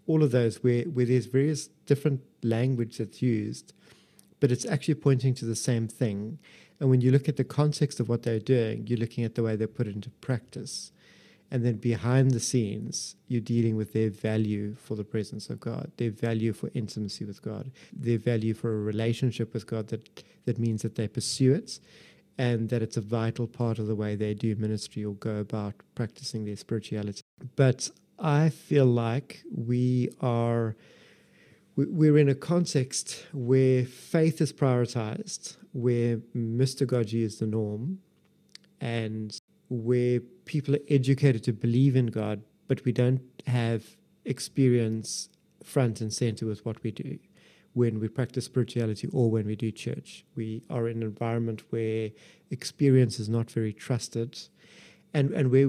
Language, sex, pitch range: English, male, 110-130 Hz